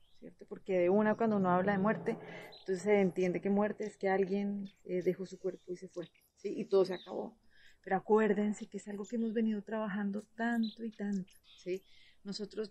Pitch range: 190-225 Hz